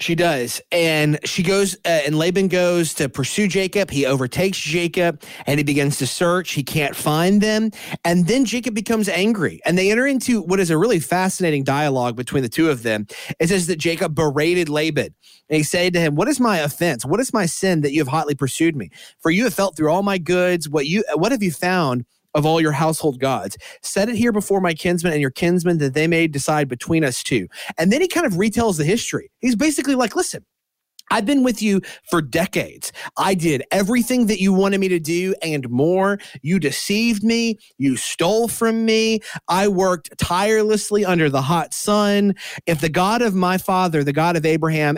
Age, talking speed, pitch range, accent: 30-49, 210 wpm, 150-195 Hz, American